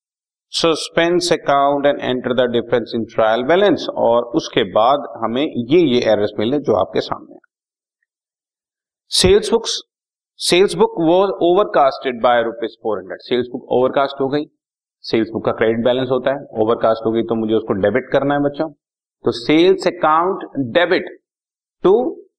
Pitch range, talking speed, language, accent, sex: 135-200 Hz, 155 wpm, Hindi, native, male